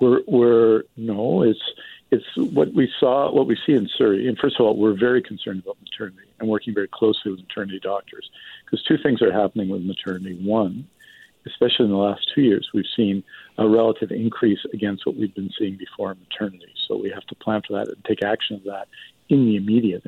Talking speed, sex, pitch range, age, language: 210 wpm, male, 100-115 Hz, 50-69, English